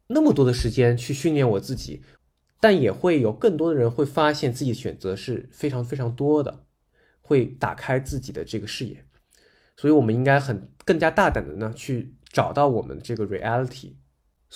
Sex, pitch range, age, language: male, 110-150 Hz, 20-39, Chinese